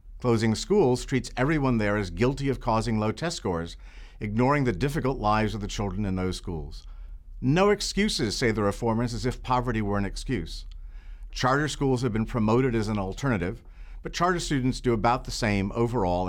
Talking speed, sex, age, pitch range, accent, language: 180 wpm, male, 50-69, 95-130 Hz, American, English